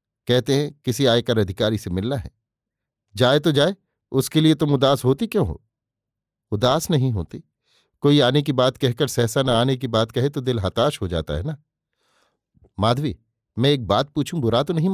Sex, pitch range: male, 110-140 Hz